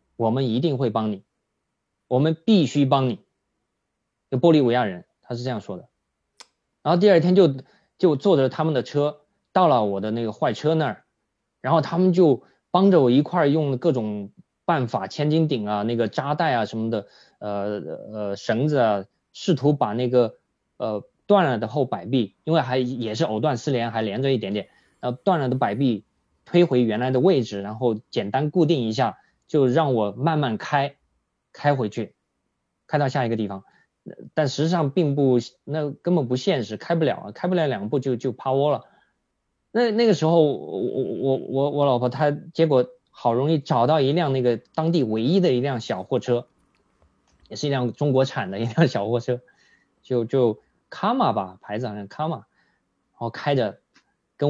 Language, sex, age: Chinese, male, 20-39